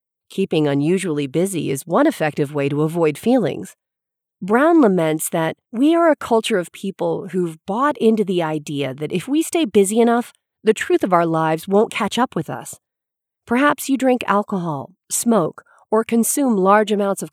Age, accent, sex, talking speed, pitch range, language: 40-59, American, female, 175 wpm, 160-225 Hz, English